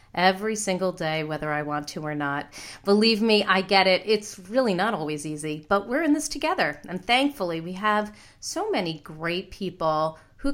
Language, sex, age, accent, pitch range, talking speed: English, female, 40-59, American, 170-225 Hz, 190 wpm